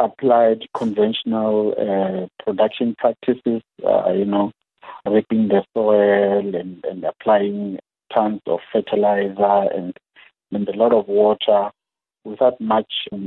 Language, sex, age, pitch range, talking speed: English, male, 50-69, 105-130 Hz, 115 wpm